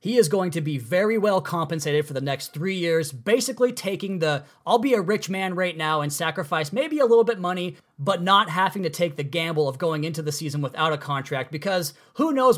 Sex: male